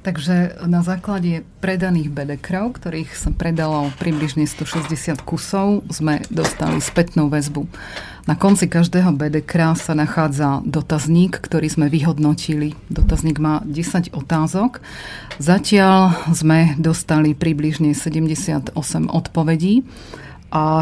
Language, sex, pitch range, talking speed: Slovak, female, 150-170 Hz, 105 wpm